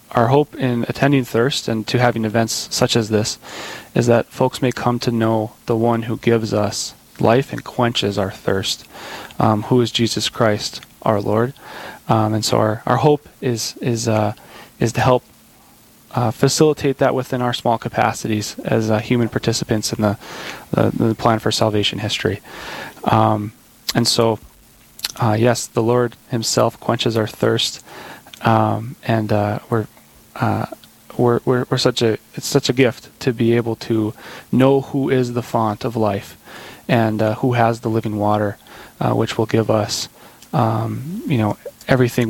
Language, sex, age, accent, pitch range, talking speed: English, male, 20-39, American, 110-125 Hz, 170 wpm